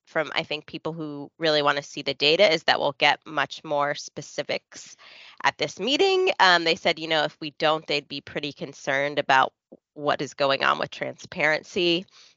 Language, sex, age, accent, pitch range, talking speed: English, female, 20-39, American, 150-180 Hz, 195 wpm